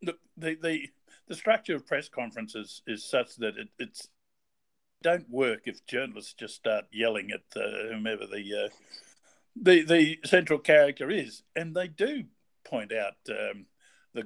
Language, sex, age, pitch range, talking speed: English, male, 50-69, 110-175 Hz, 150 wpm